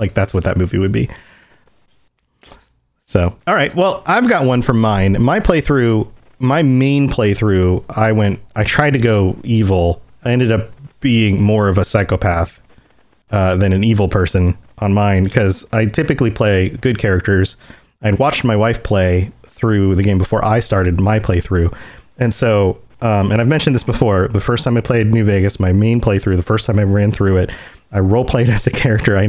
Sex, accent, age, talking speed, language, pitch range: male, American, 30-49, 190 wpm, English, 100-130 Hz